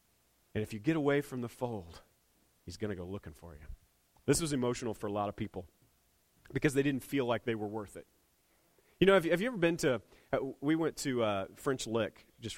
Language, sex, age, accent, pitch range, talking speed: English, male, 30-49, American, 120-160 Hz, 230 wpm